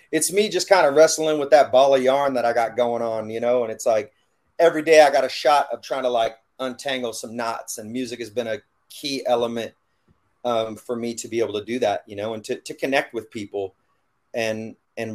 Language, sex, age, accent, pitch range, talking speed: English, male, 30-49, American, 110-130 Hz, 240 wpm